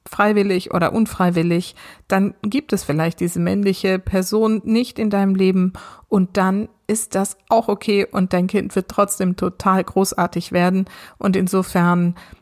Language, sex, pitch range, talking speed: German, female, 175-205 Hz, 145 wpm